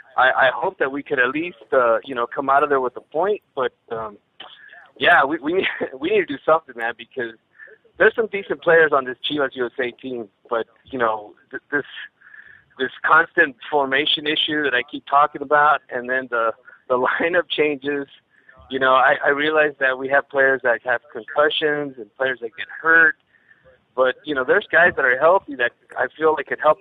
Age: 30-49